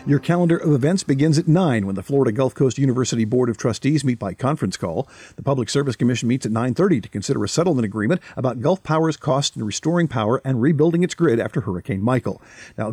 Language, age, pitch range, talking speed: English, 50-69, 115-160 Hz, 220 wpm